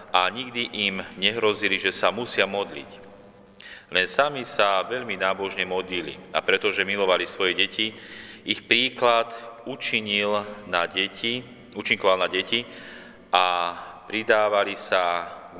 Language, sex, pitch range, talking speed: Slovak, male, 95-115 Hz, 120 wpm